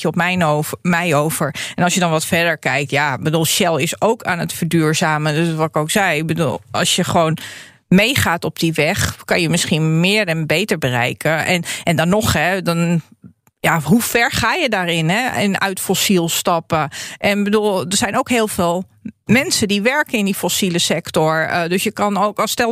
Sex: female